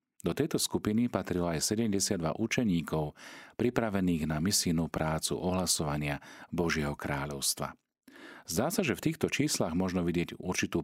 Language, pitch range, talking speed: Slovak, 80-100 Hz, 125 wpm